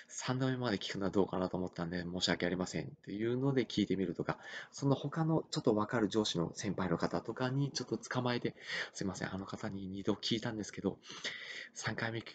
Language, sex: Japanese, male